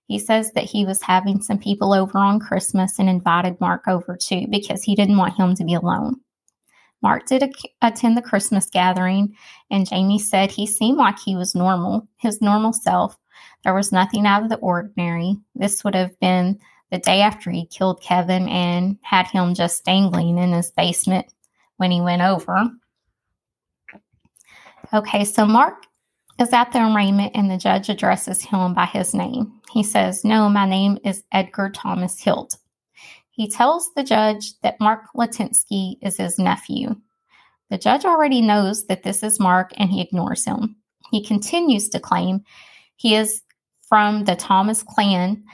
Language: English